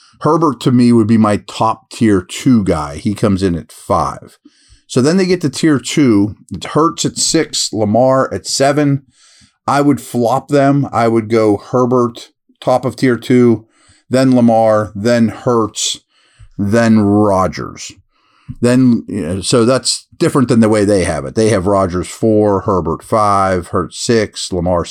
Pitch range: 105-140 Hz